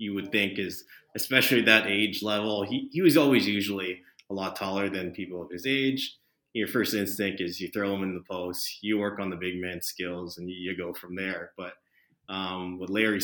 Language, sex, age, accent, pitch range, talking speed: English, male, 30-49, American, 95-115 Hz, 220 wpm